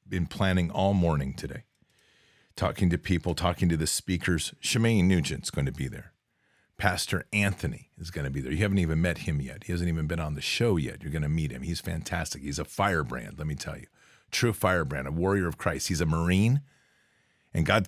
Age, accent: 40-59, American